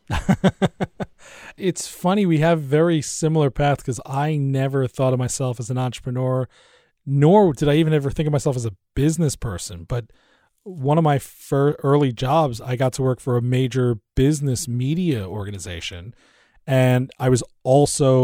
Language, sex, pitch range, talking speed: English, male, 125-150 Hz, 160 wpm